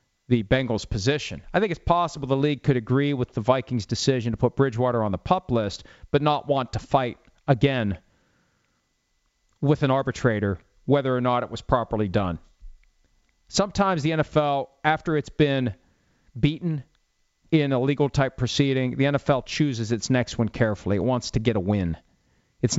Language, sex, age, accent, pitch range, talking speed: English, male, 40-59, American, 110-140 Hz, 170 wpm